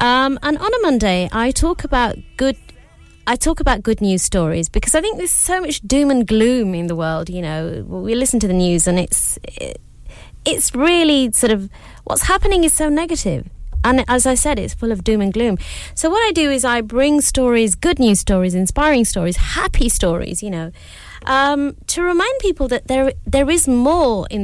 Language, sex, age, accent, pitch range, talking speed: English, female, 30-49, British, 185-255 Hz, 205 wpm